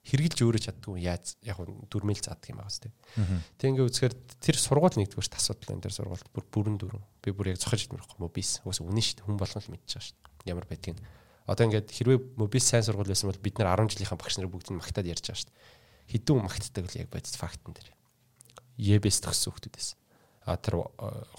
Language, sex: English, male